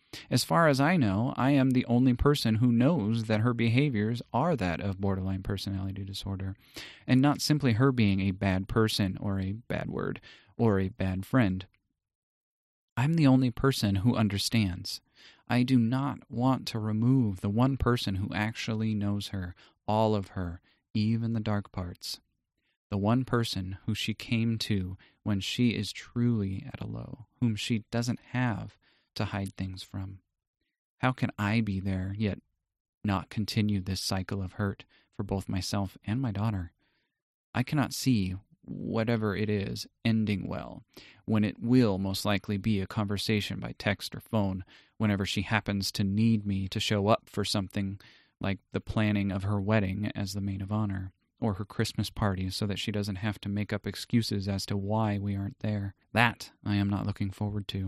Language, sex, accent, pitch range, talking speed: English, male, American, 100-115 Hz, 175 wpm